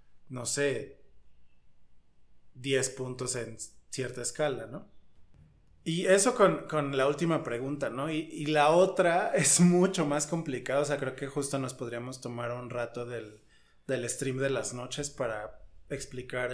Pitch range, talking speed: 120-145 Hz, 150 wpm